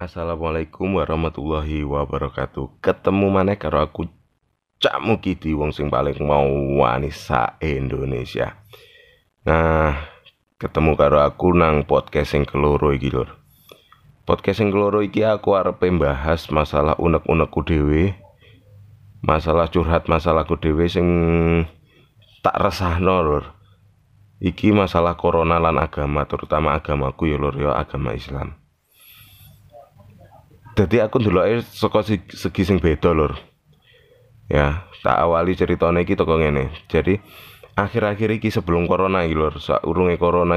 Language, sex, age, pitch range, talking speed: Indonesian, male, 30-49, 75-100 Hz, 110 wpm